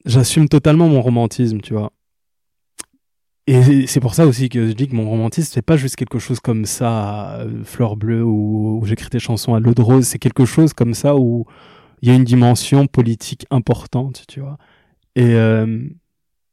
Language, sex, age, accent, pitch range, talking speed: French, male, 20-39, French, 115-135 Hz, 190 wpm